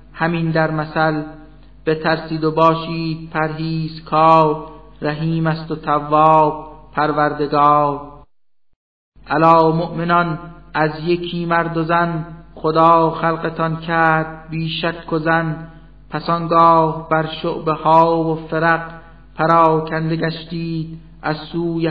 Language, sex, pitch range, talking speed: Persian, male, 155-165 Hz, 95 wpm